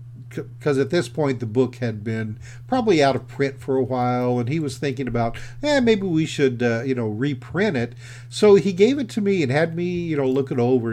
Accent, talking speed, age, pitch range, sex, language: American, 235 wpm, 50-69, 120-145 Hz, male, English